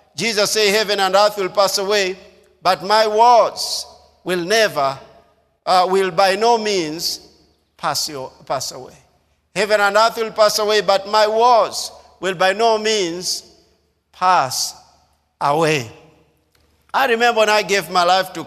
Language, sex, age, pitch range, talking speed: English, male, 50-69, 155-200 Hz, 145 wpm